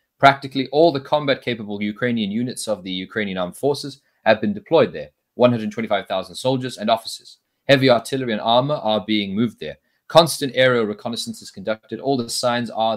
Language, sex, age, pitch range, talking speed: English, male, 30-49, 110-140 Hz, 165 wpm